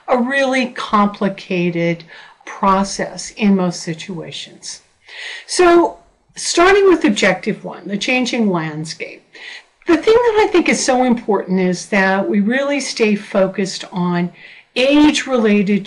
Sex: female